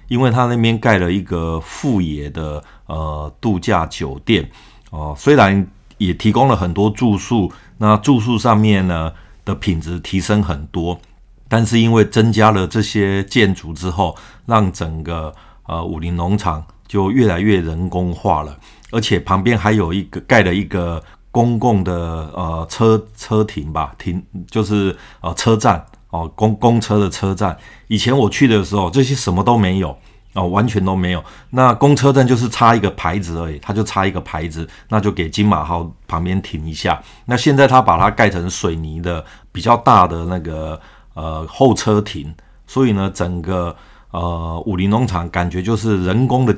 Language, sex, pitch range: Chinese, male, 85-110 Hz